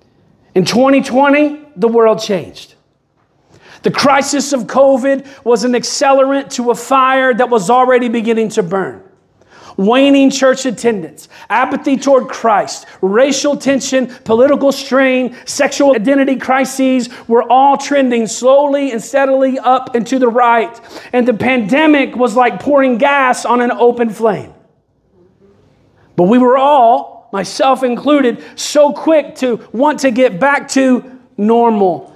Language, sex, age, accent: English, male, 40-59, American